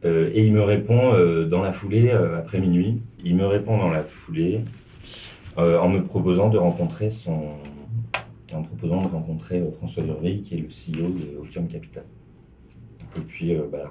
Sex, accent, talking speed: male, French, 195 wpm